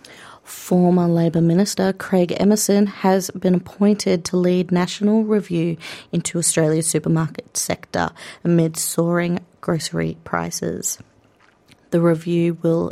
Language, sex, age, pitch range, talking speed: English, female, 30-49, 165-190 Hz, 105 wpm